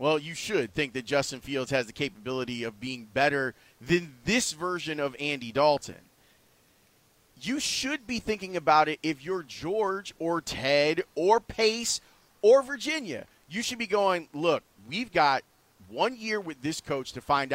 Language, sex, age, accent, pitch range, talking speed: English, male, 30-49, American, 140-195 Hz, 165 wpm